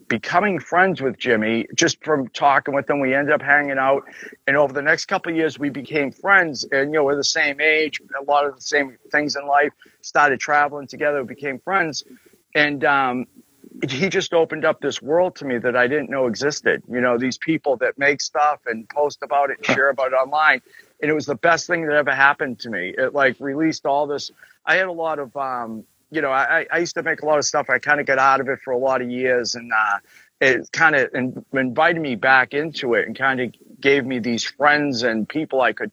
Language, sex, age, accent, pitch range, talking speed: English, male, 50-69, American, 130-150 Hz, 235 wpm